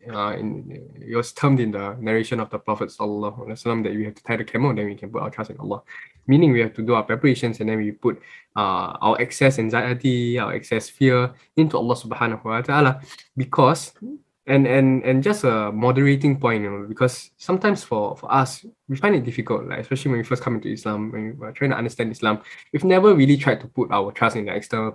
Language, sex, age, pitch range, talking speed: English, male, 10-29, 110-135 Hz, 225 wpm